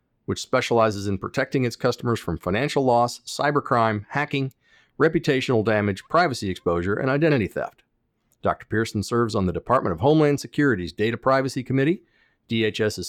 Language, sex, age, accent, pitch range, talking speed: English, male, 50-69, American, 100-130 Hz, 140 wpm